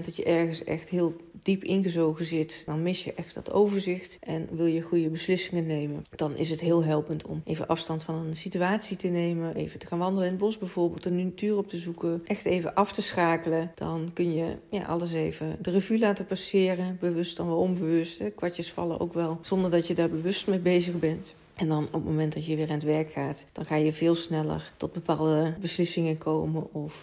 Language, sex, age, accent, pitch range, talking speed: Dutch, female, 40-59, Dutch, 155-175 Hz, 220 wpm